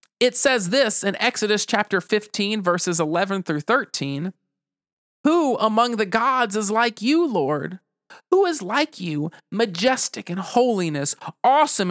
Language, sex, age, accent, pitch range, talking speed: English, male, 40-59, American, 150-220 Hz, 135 wpm